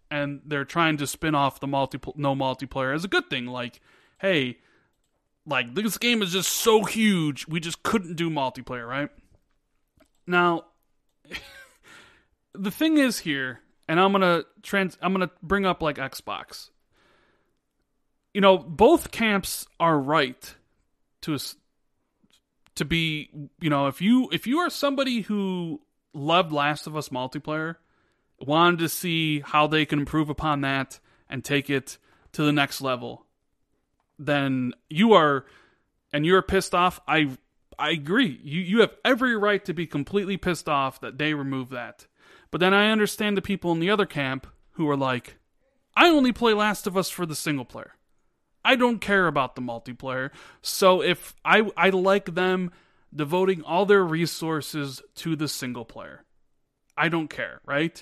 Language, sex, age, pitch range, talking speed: English, male, 30-49, 140-195 Hz, 160 wpm